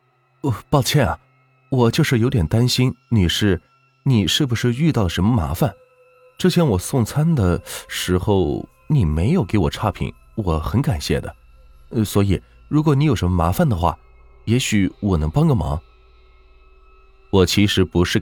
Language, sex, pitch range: Chinese, male, 80-125 Hz